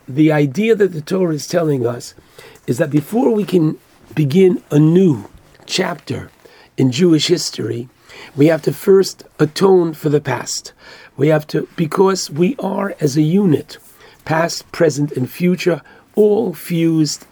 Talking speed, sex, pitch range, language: 150 wpm, male, 145-180 Hz, English